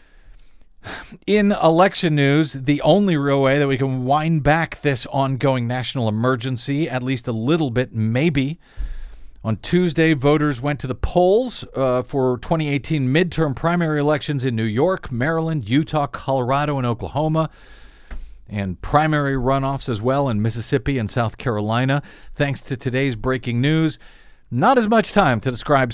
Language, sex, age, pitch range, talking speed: English, male, 50-69, 115-150 Hz, 150 wpm